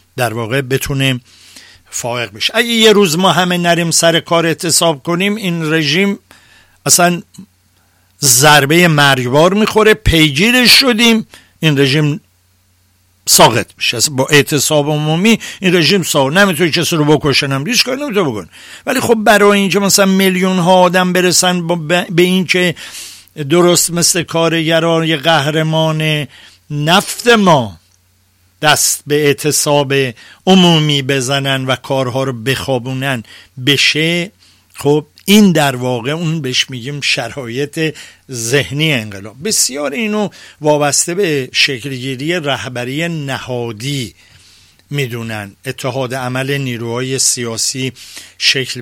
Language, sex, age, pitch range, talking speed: Persian, male, 60-79, 125-170 Hz, 115 wpm